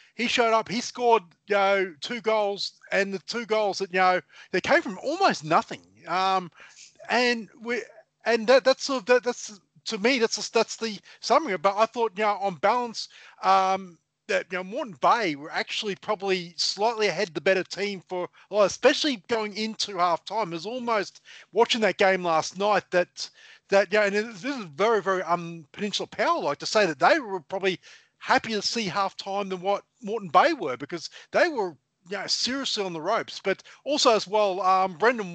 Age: 30-49